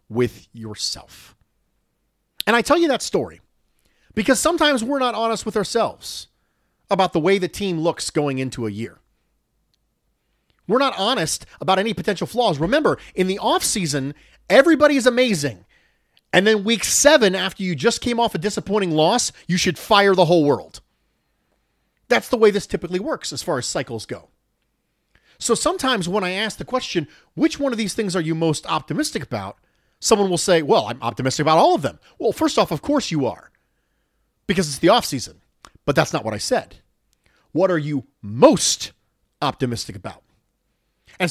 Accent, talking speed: American, 175 wpm